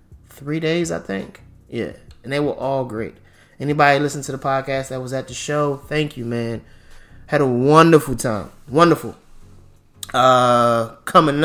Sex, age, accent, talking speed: male, 20-39, American, 155 wpm